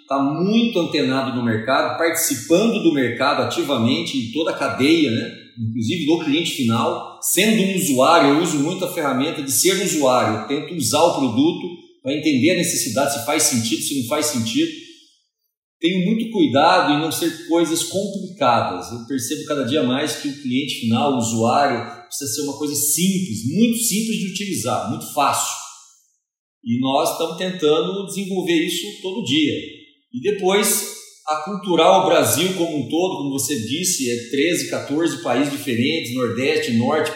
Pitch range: 140-210 Hz